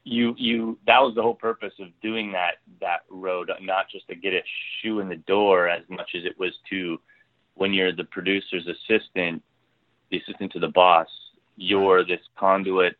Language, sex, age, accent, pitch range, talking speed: English, male, 30-49, American, 85-105 Hz, 185 wpm